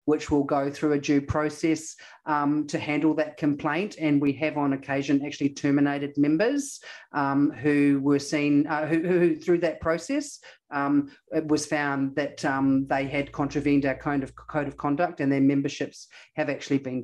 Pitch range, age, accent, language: 150-190 Hz, 40-59, Australian, English